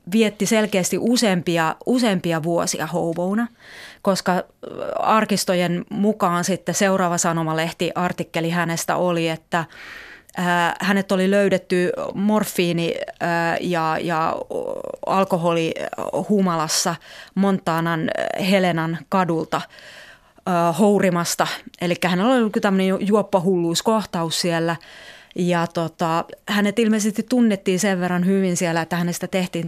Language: Finnish